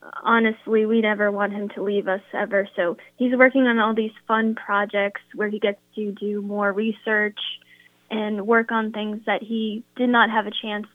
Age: 10-29